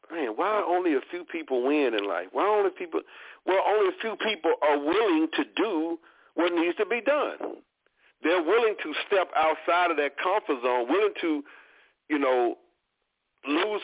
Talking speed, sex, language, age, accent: 175 wpm, male, English, 50-69, American